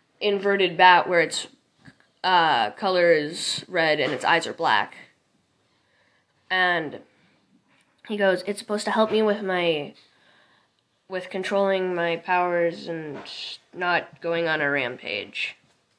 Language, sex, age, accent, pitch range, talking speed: English, female, 10-29, American, 170-205 Hz, 125 wpm